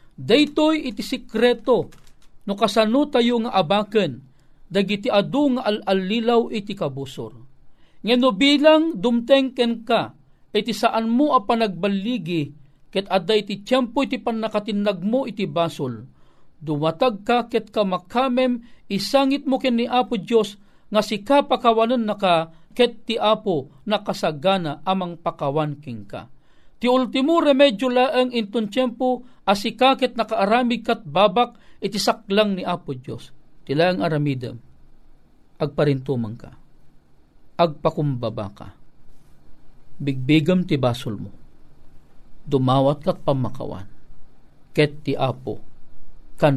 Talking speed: 110 wpm